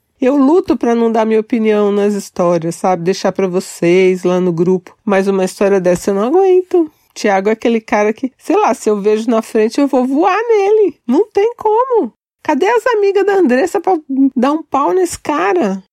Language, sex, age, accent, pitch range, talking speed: Portuguese, female, 40-59, Brazilian, 180-250 Hz, 200 wpm